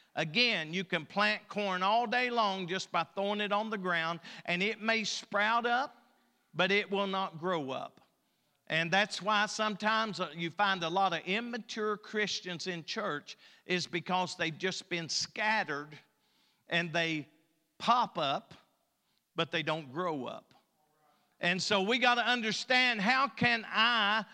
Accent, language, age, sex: American, English, 50-69, male